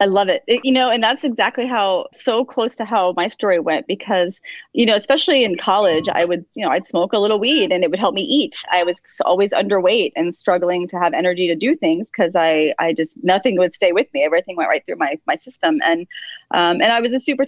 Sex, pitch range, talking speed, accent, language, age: female, 175-250 Hz, 250 wpm, American, English, 30-49